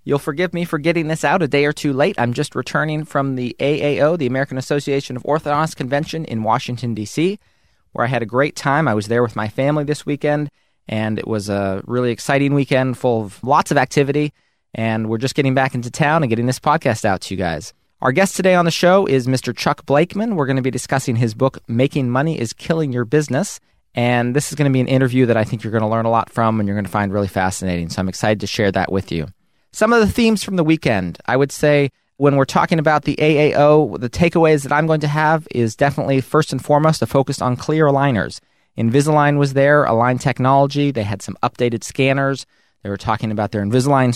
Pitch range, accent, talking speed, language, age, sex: 115-145 Hz, American, 230 wpm, English, 30-49, male